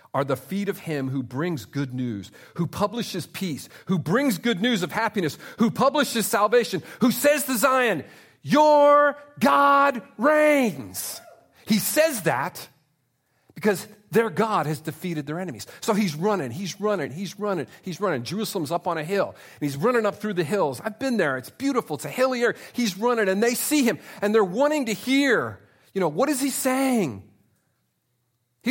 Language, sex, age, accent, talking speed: English, male, 40-59, American, 180 wpm